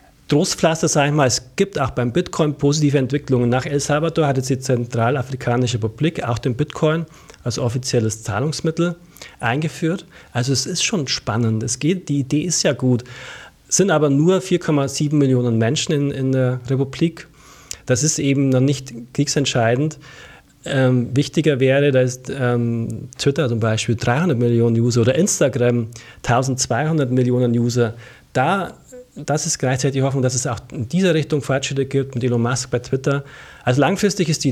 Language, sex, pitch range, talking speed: German, male, 120-150 Hz, 165 wpm